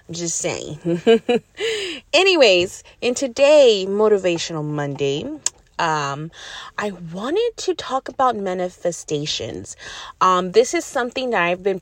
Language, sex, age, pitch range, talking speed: English, female, 30-49, 170-270 Hz, 105 wpm